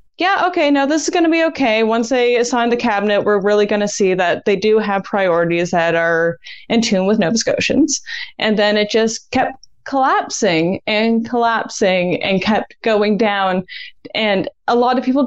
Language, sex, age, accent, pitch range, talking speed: English, female, 10-29, American, 185-250 Hz, 190 wpm